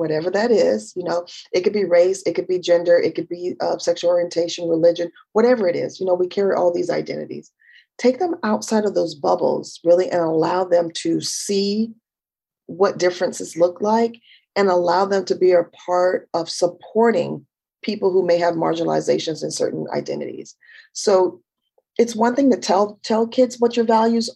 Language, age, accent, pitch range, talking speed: English, 40-59, American, 175-235 Hz, 180 wpm